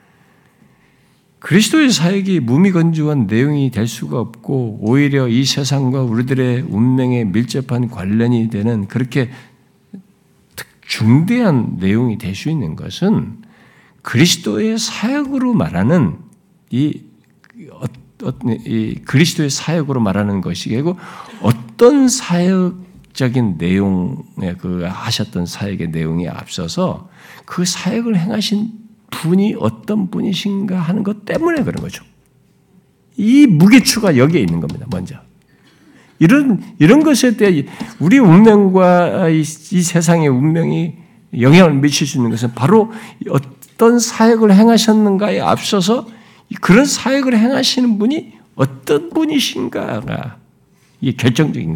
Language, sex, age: Korean, male, 50-69